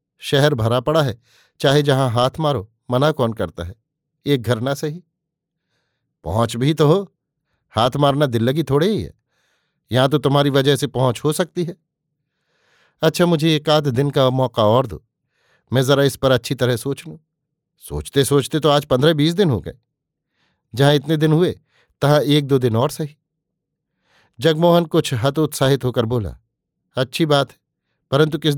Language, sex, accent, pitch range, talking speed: Hindi, male, native, 125-155 Hz, 170 wpm